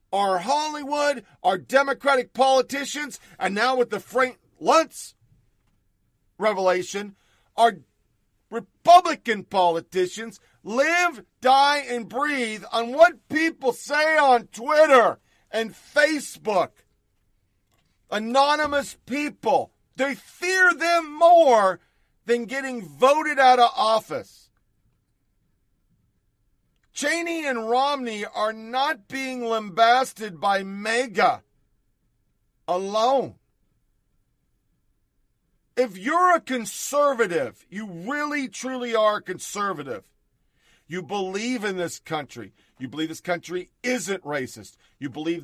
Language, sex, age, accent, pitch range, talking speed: English, male, 50-69, American, 180-265 Hz, 95 wpm